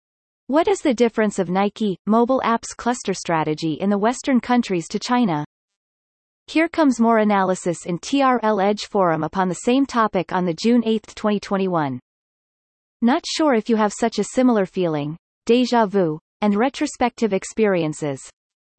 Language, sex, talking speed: English, female, 150 wpm